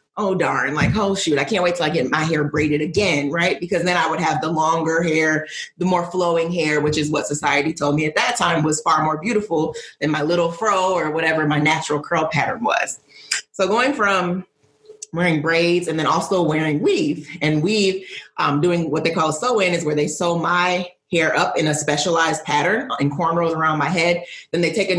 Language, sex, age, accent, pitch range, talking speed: English, female, 30-49, American, 155-180 Hz, 215 wpm